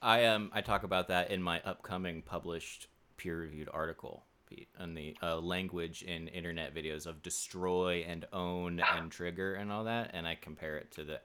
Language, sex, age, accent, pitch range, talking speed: English, male, 30-49, American, 85-100 Hz, 185 wpm